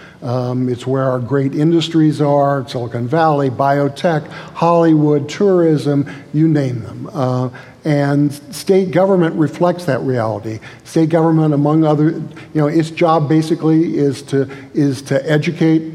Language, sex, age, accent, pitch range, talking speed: English, male, 50-69, American, 130-150 Hz, 135 wpm